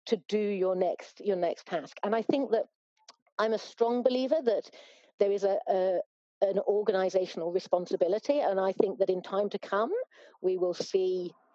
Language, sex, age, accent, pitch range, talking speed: English, female, 40-59, British, 180-230 Hz, 175 wpm